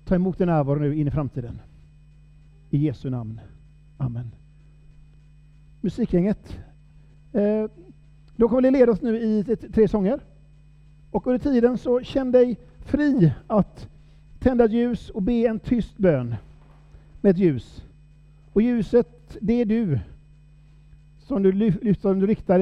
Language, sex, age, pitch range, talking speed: Swedish, male, 50-69, 150-195 Hz, 135 wpm